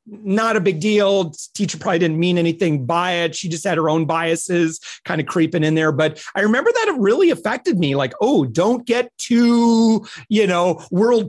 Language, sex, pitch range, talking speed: English, male, 160-215 Hz, 200 wpm